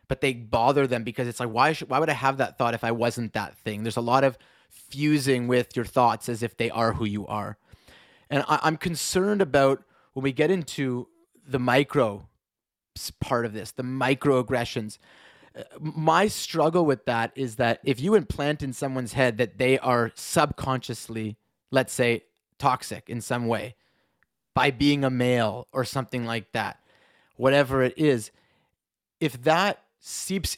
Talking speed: 170 wpm